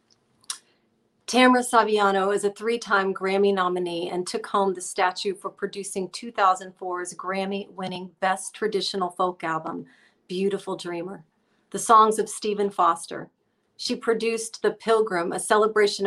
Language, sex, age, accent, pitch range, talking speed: English, female, 40-59, American, 185-210 Hz, 125 wpm